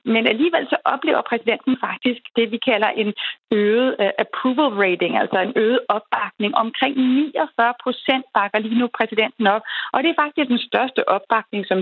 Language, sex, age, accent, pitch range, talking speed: Danish, female, 30-49, native, 210-250 Hz, 170 wpm